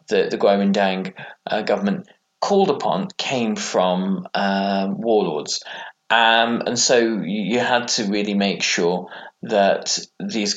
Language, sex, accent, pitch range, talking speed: English, male, British, 100-145 Hz, 115 wpm